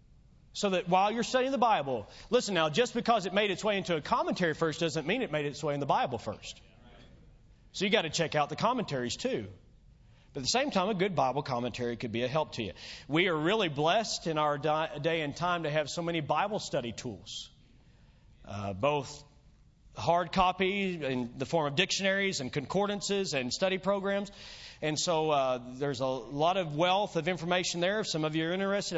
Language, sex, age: English, male, 40-59